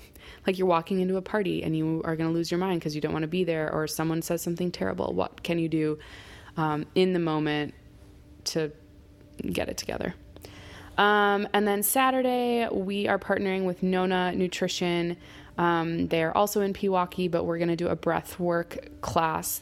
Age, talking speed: 20-39, 190 wpm